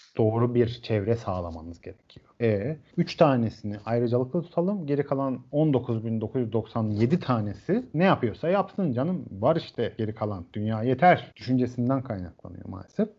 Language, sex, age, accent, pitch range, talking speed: Turkish, male, 40-59, native, 110-145 Hz, 125 wpm